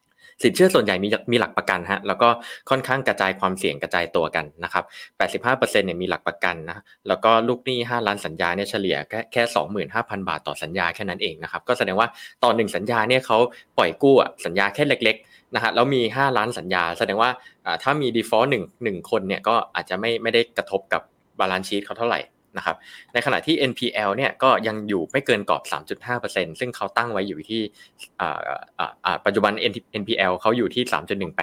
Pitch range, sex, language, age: 100-125 Hz, male, Thai, 20-39